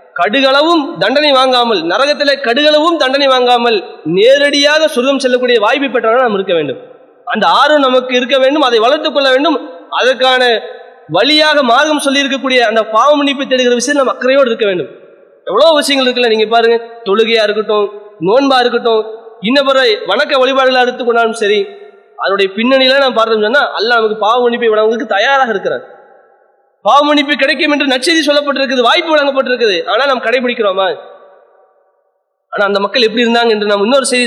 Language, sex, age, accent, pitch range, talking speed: English, male, 30-49, Indian, 235-290 Hz, 90 wpm